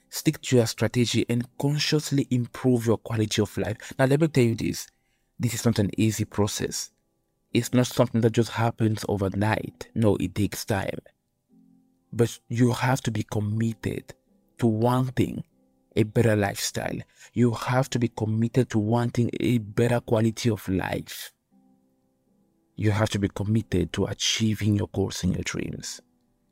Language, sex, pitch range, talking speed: English, male, 105-120 Hz, 155 wpm